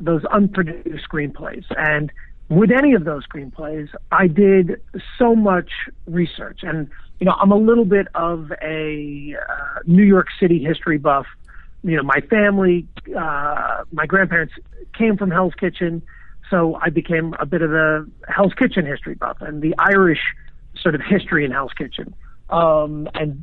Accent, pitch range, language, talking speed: American, 155-190 Hz, English, 160 wpm